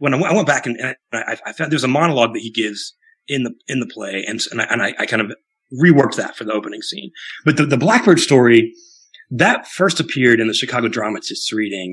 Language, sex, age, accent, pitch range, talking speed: English, male, 30-49, American, 115-170 Hz, 250 wpm